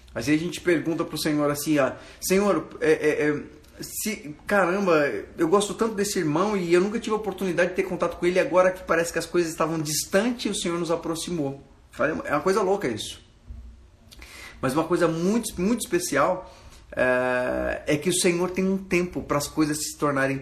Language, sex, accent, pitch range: Portuguese, male, Brazilian, 125-175 Hz